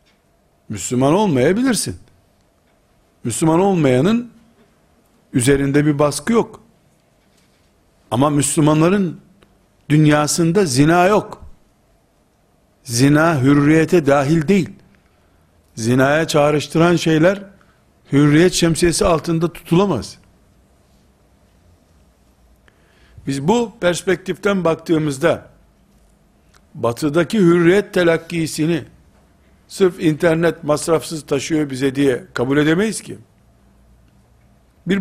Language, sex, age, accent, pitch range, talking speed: Turkish, male, 60-79, native, 115-175 Hz, 70 wpm